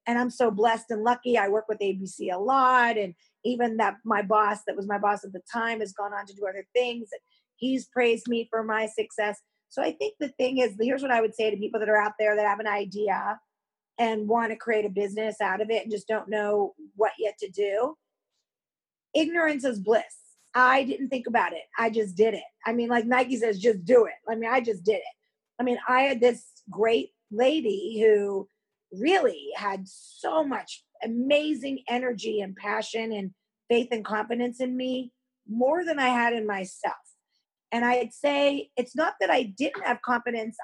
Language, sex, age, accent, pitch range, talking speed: English, female, 30-49, American, 215-255 Hz, 205 wpm